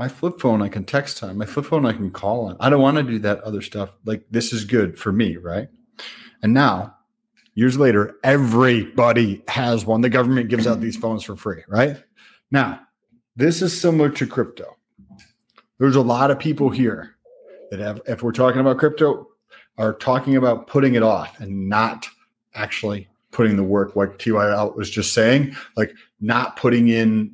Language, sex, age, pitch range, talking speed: English, male, 30-49, 110-130 Hz, 185 wpm